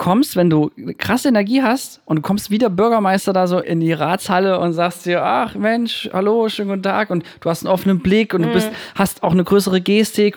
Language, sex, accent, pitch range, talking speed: German, male, German, 160-200 Hz, 225 wpm